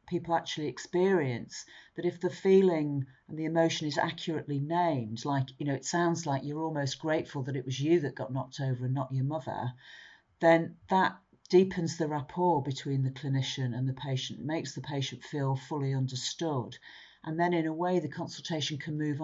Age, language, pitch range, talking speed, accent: 50-69, English, 140-165 Hz, 185 wpm, British